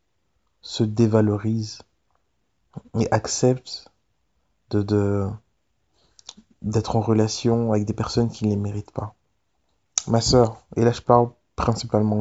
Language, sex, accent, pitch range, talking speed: French, male, French, 105-120 Hz, 120 wpm